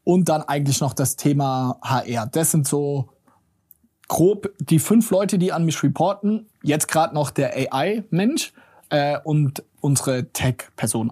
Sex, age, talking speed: male, 20-39, 145 wpm